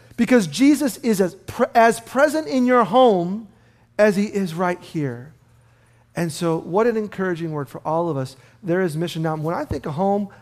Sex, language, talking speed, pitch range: male, English, 190 wpm, 130-210 Hz